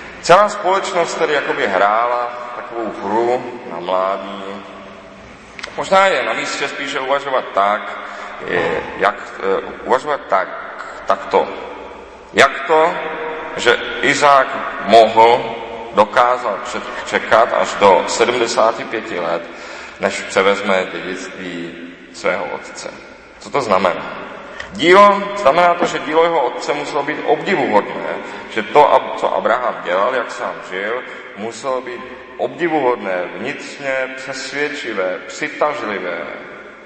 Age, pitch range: 30-49, 115-175 Hz